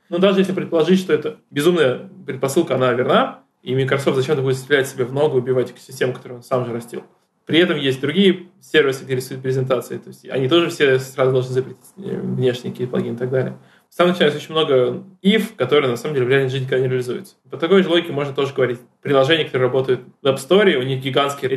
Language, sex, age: Russian, male, 20-39